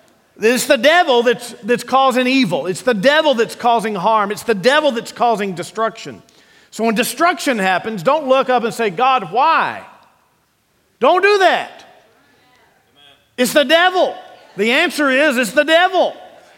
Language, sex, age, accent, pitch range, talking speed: English, male, 50-69, American, 220-290 Hz, 150 wpm